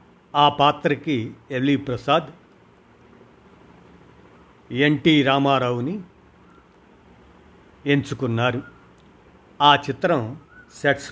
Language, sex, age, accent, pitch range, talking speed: Telugu, male, 50-69, native, 120-145 Hz, 55 wpm